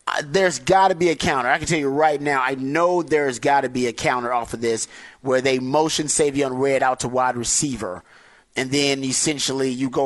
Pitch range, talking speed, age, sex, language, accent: 125-150 Hz, 225 wpm, 30-49, male, English, American